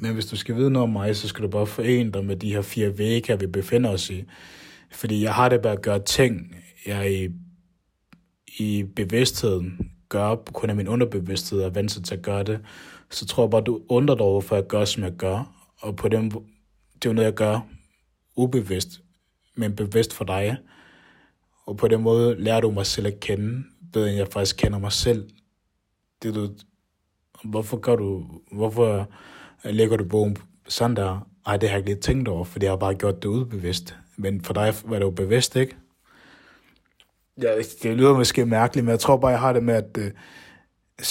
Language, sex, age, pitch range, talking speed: Danish, male, 20-39, 100-115 Hz, 210 wpm